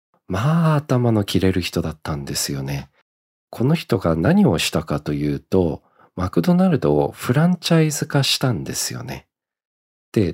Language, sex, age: Japanese, male, 40-59